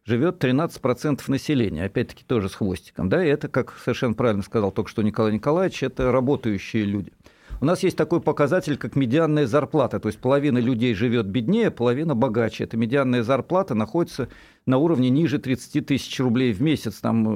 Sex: male